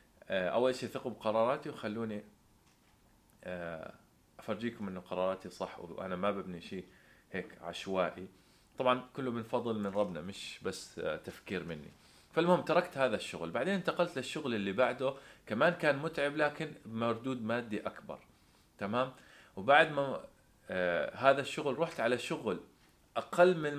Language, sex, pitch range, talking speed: Arabic, male, 105-135 Hz, 130 wpm